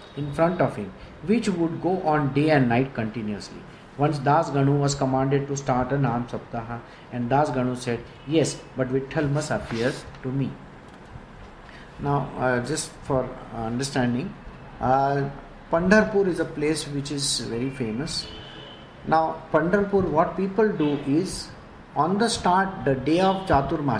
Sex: male